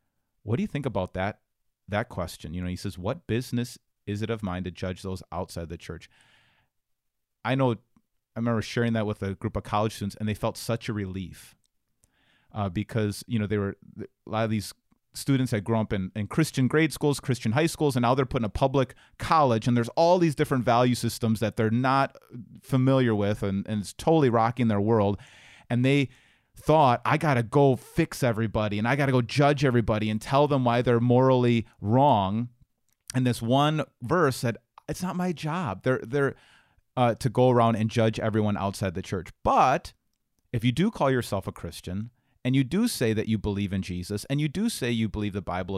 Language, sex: English, male